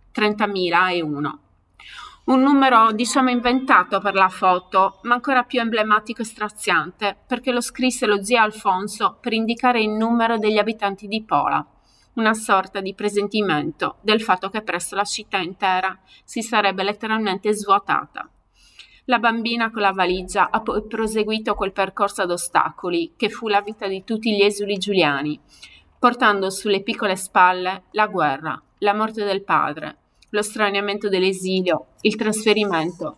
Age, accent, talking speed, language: 30-49, native, 145 wpm, Italian